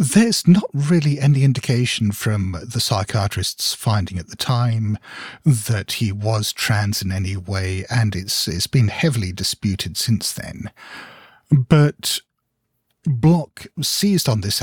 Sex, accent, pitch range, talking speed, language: male, British, 100-135 Hz, 130 wpm, English